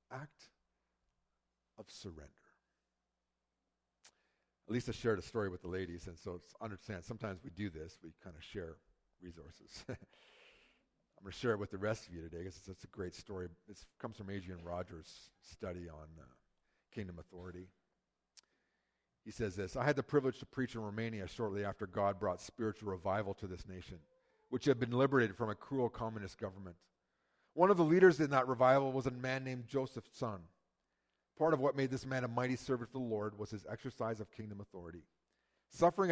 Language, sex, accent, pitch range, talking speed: English, male, American, 95-135 Hz, 185 wpm